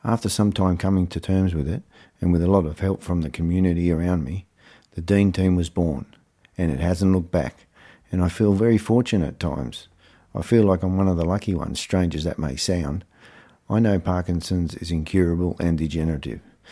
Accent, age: Australian, 50-69